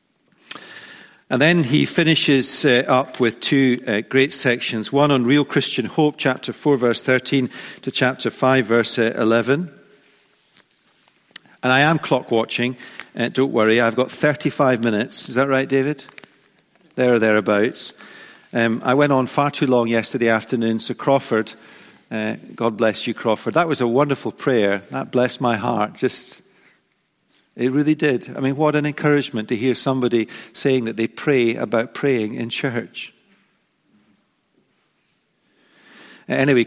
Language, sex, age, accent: English, male, 50-69, British